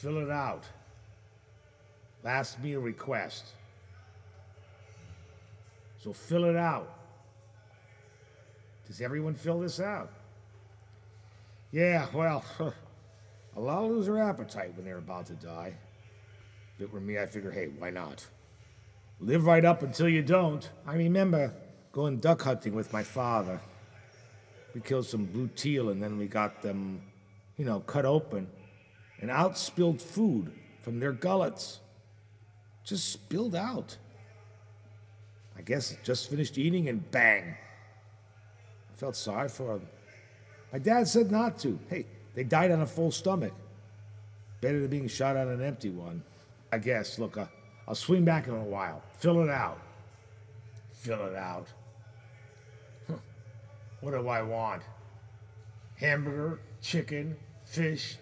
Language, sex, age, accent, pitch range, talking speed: English, male, 50-69, American, 105-140 Hz, 135 wpm